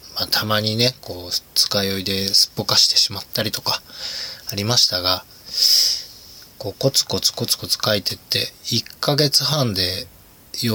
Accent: native